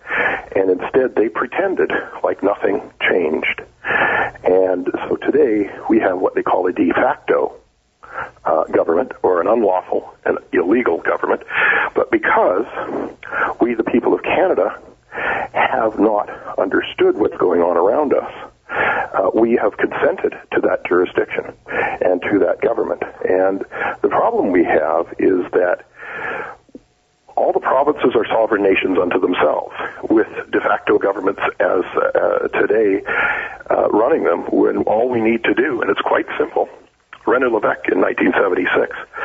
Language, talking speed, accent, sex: English, 140 wpm, American, male